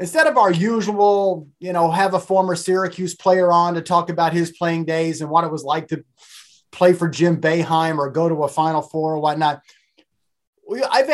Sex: male